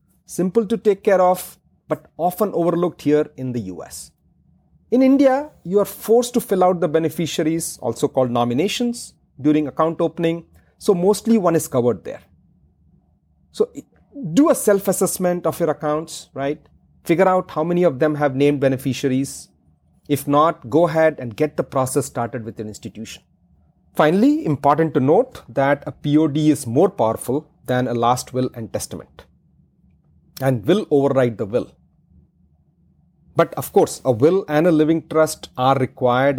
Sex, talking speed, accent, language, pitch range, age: male, 155 wpm, Indian, English, 130-180 Hz, 40-59